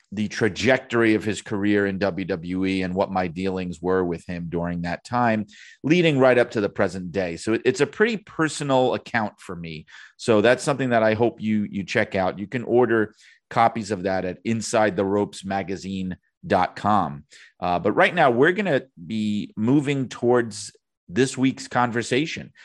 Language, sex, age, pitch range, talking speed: English, male, 30-49, 95-125 Hz, 170 wpm